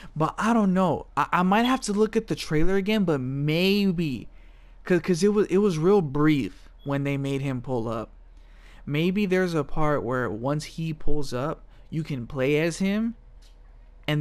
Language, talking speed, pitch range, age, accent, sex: English, 190 wpm, 115-155 Hz, 20-39, American, male